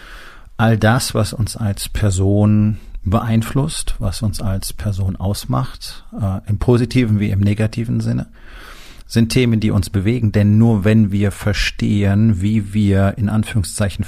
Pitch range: 95-115 Hz